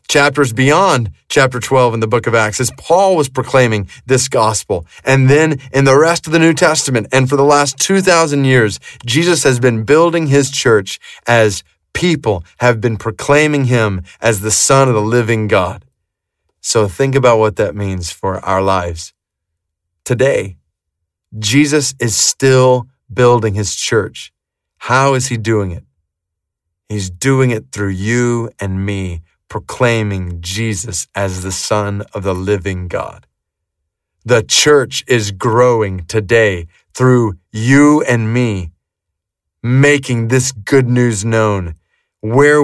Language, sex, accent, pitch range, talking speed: English, male, American, 100-135 Hz, 140 wpm